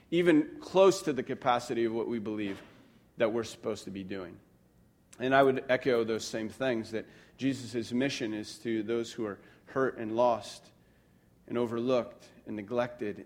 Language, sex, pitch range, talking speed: English, male, 115-140 Hz, 170 wpm